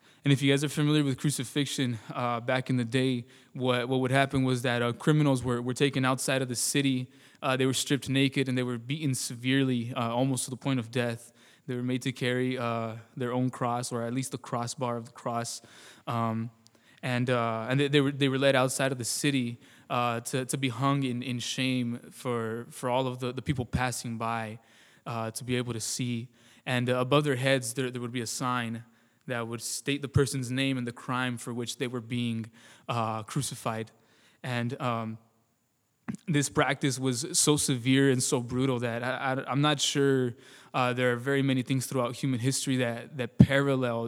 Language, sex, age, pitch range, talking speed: English, male, 20-39, 120-135 Hz, 210 wpm